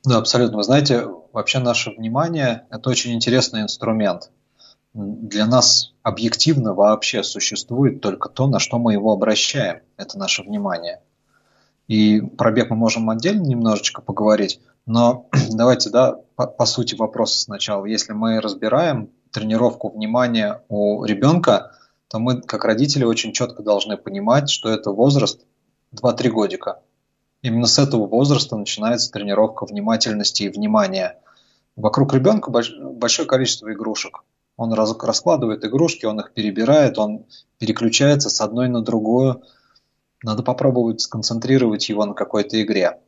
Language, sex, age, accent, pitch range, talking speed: Russian, male, 20-39, native, 110-125 Hz, 130 wpm